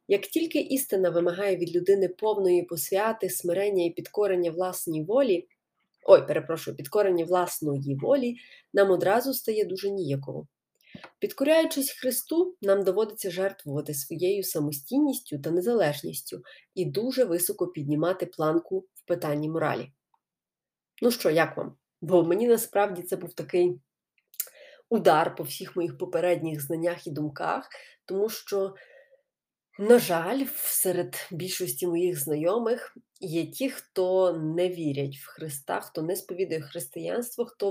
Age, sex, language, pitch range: 30-49, female, Ukrainian, 170-235 Hz